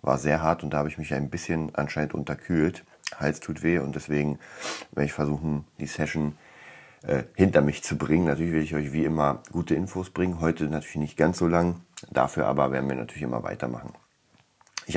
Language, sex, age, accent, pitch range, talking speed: German, male, 30-49, German, 75-85 Hz, 200 wpm